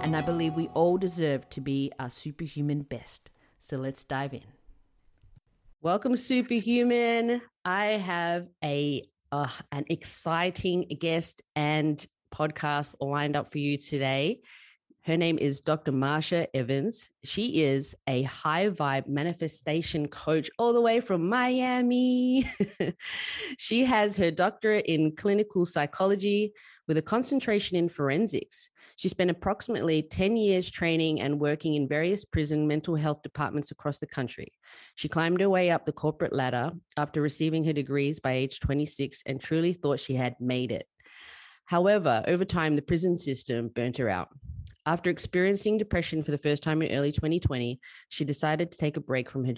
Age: 20-39